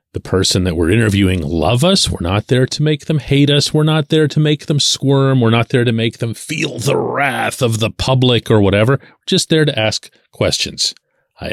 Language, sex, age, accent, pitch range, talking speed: English, male, 40-59, American, 100-140 Hz, 225 wpm